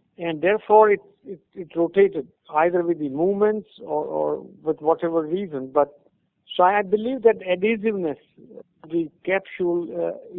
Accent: Indian